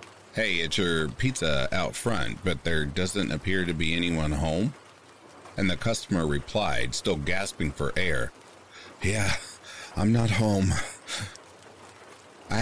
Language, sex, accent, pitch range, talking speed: English, male, American, 75-100 Hz, 130 wpm